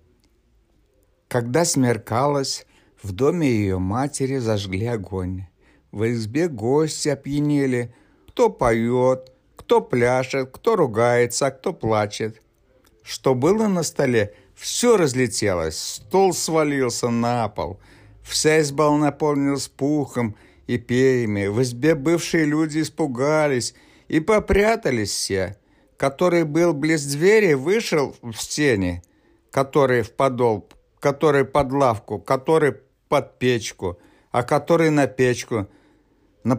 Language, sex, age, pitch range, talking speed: Russian, male, 60-79, 115-155 Hz, 110 wpm